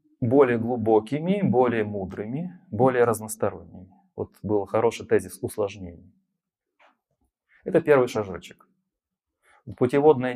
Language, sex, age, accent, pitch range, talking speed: Ukrainian, male, 30-49, native, 110-145 Hz, 85 wpm